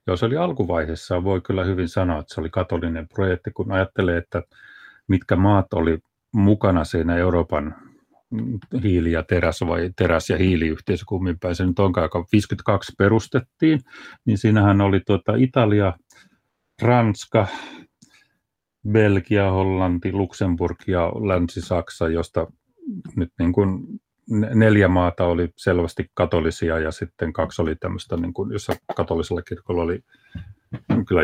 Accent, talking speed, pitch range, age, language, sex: native, 125 wpm, 85-105 Hz, 40-59, Finnish, male